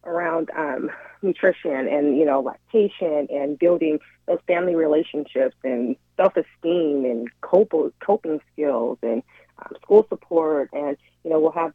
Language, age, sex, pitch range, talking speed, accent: English, 30-49, female, 150-185 Hz, 135 wpm, American